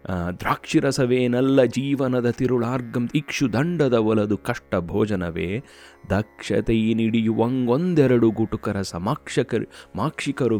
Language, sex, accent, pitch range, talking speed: Kannada, male, native, 90-140 Hz, 85 wpm